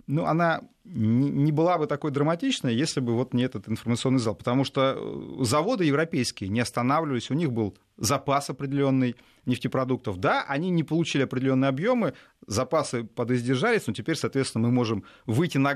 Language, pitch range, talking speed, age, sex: Russian, 120-165 Hz, 155 wpm, 30-49, male